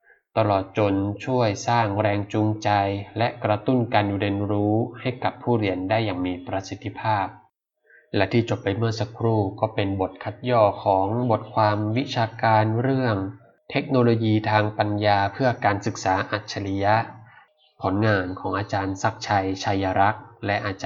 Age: 20-39